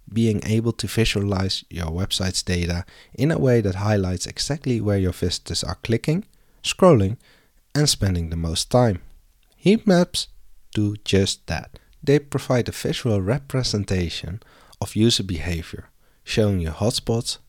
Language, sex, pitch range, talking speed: English, male, 85-120 Hz, 135 wpm